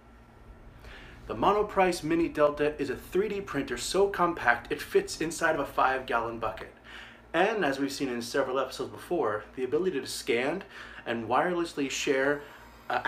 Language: English